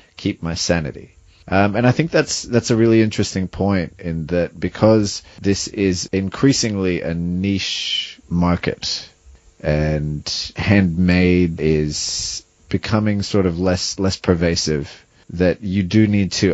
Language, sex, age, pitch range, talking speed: English, male, 30-49, 85-105 Hz, 130 wpm